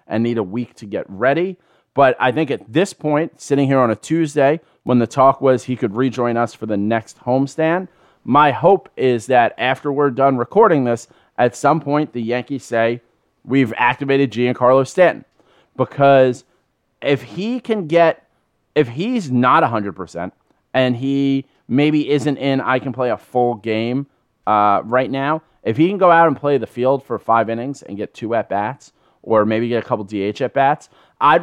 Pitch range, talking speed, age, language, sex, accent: 120-145 Hz, 185 wpm, 30-49, English, male, American